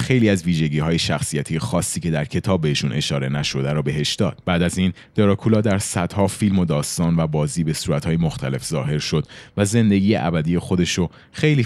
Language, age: Persian, 30-49